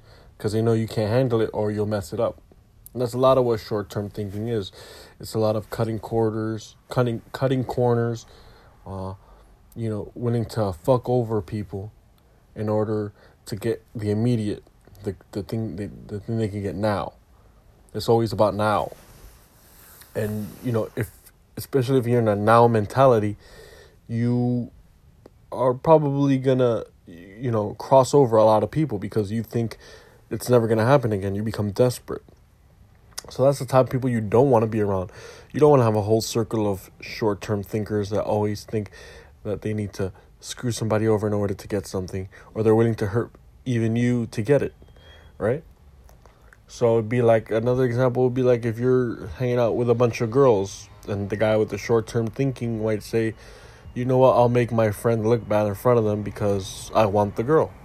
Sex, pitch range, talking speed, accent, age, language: male, 105-120 Hz, 195 wpm, American, 20-39, English